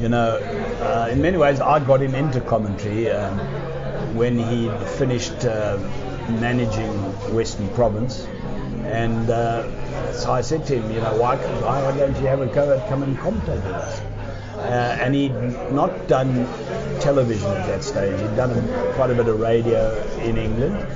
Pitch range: 115-130 Hz